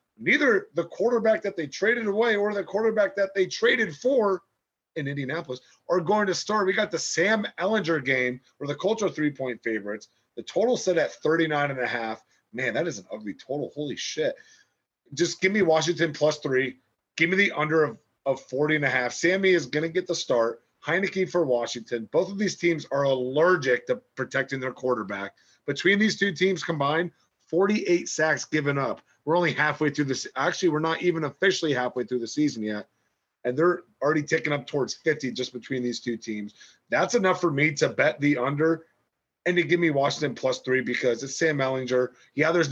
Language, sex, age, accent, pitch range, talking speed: English, male, 30-49, American, 130-175 Hz, 200 wpm